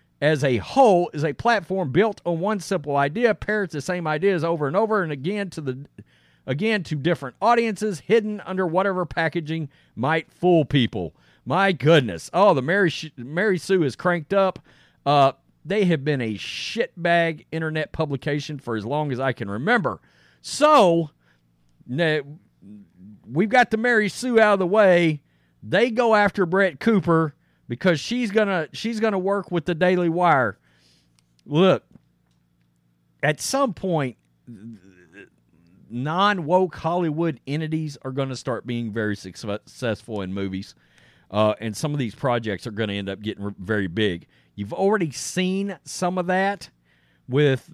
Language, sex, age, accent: English, male, 40-59, American